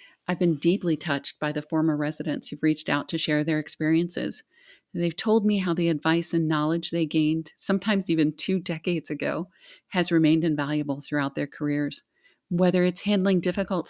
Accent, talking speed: American, 175 wpm